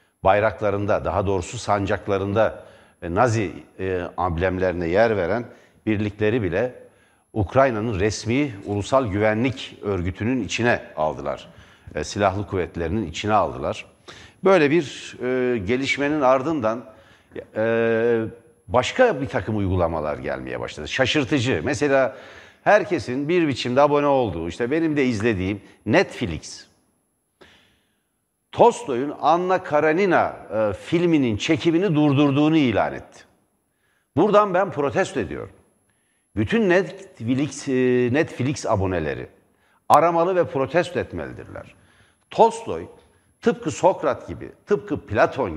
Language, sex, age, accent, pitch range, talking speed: Turkish, male, 60-79, native, 100-145 Hz, 100 wpm